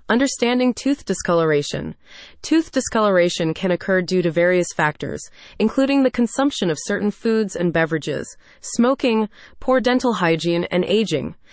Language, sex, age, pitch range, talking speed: English, female, 30-49, 170-240 Hz, 130 wpm